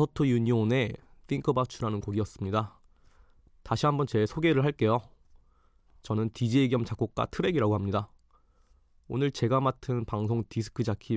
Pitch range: 100-125 Hz